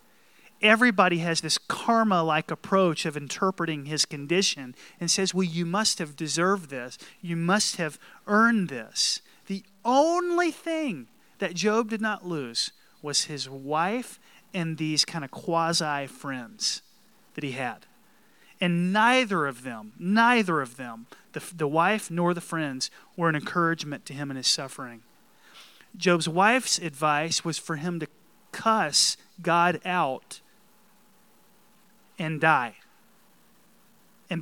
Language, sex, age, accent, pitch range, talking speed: English, male, 30-49, American, 155-205 Hz, 130 wpm